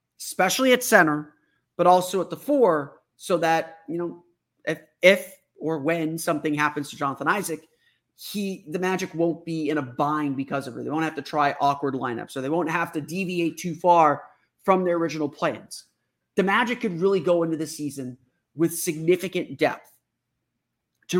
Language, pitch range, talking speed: English, 150-190 Hz, 180 wpm